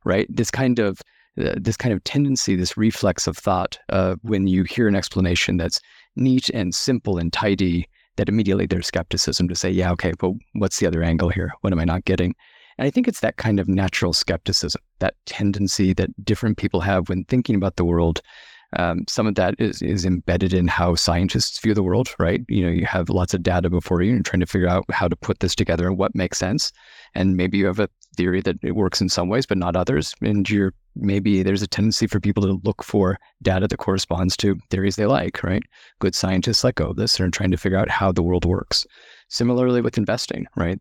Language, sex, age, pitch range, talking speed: English, male, 30-49, 90-105 Hz, 230 wpm